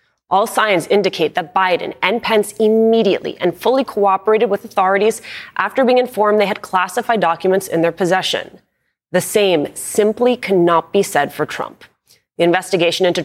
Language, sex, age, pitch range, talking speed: English, female, 30-49, 180-245 Hz, 155 wpm